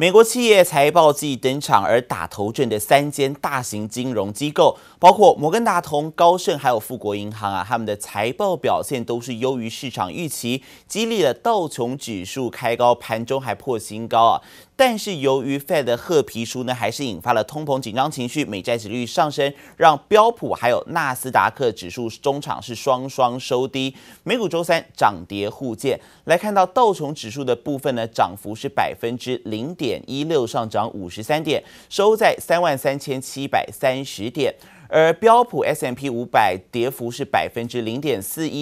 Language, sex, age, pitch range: Chinese, male, 30-49, 115-150 Hz